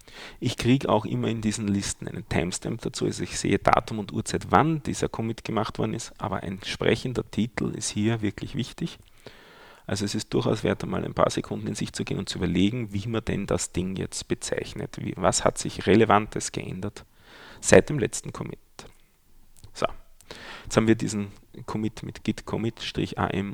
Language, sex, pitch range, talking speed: German, male, 100-130 Hz, 180 wpm